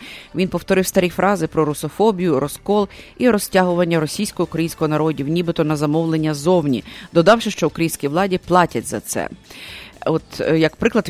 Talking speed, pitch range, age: 135 wpm, 165-190 Hz, 30-49